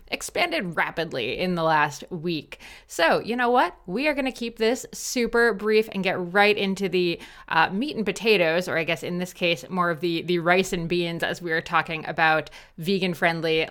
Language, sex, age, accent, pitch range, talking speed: English, female, 20-39, American, 165-190 Hz, 200 wpm